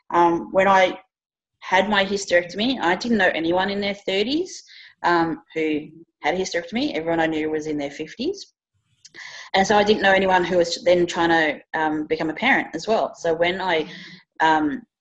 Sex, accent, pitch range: female, Australian, 155-195 Hz